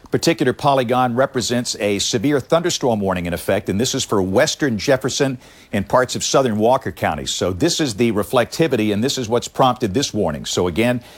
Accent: American